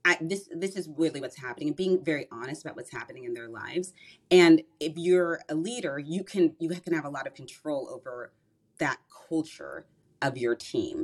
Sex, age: female, 30-49